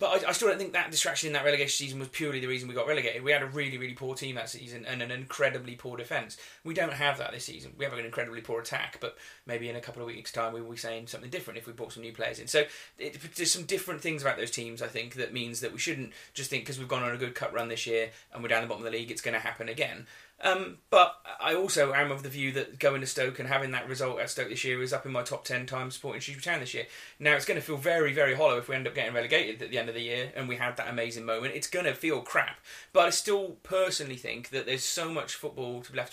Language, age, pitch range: English, 30-49, 120-150 Hz